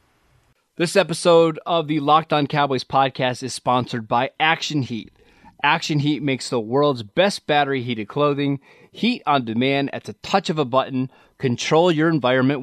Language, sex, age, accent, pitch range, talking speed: English, male, 30-49, American, 130-155 Hz, 160 wpm